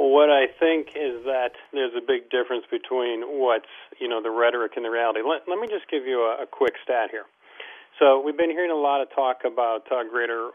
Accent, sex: American, male